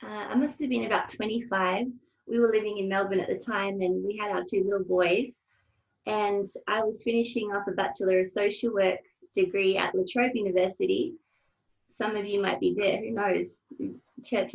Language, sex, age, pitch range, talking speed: English, female, 20-39, 190-245 Hz, 190 wpm